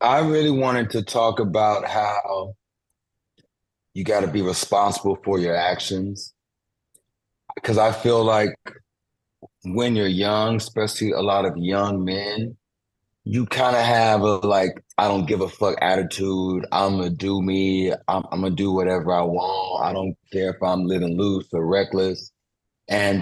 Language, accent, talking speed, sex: English, American, 160 wpm, male